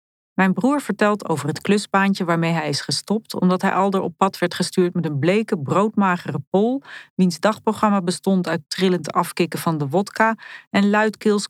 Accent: Dutch